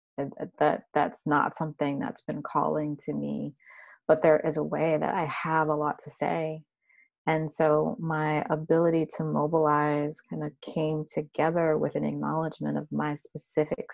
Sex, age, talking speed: female, 30-49, 160 wpm